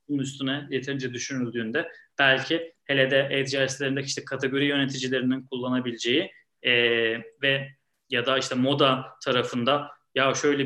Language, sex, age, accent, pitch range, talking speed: Turkish, male, 30-49, native, 125-155 Hz, 120 wpm